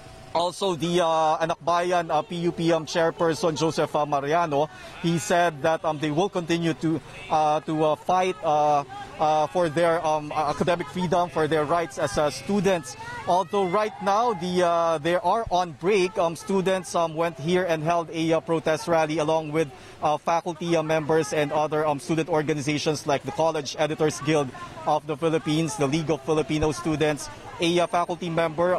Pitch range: 150-170 Hz